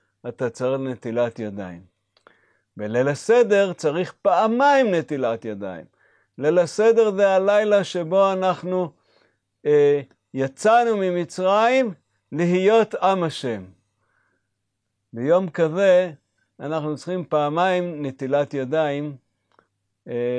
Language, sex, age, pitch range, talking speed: Hebrew, male, 50-69, 110-160 Hz, 90 wpm